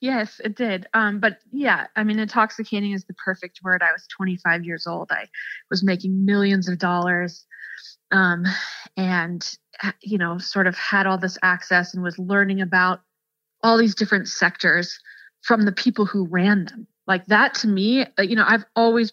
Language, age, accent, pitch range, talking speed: English, 20-39, American, 180-215 Hz, 175 wpm